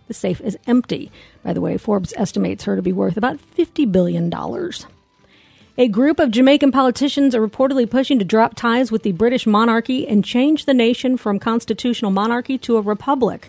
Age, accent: 50-69, American